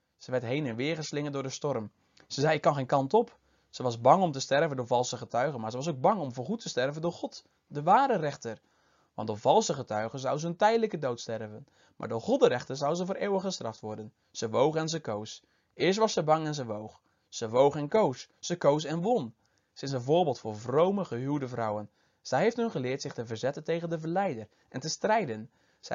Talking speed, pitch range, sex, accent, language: 235 wpm, 125-180 Hz, male, Dutch, Dutch